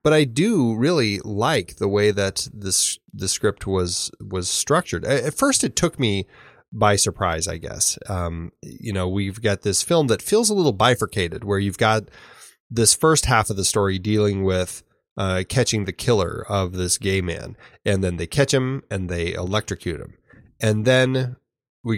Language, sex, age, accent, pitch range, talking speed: English, male, 20-39, American, 95-115 Hz, 185 wpm